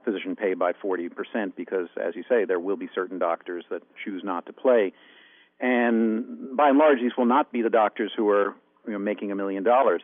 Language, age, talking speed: English, 50-69, 220 wpm